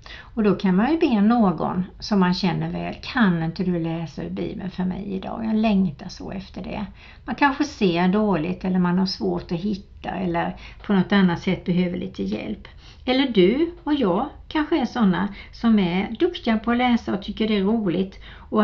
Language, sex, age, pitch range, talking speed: Swedish, female, 60-79, 185-240 Hz, 195 wpm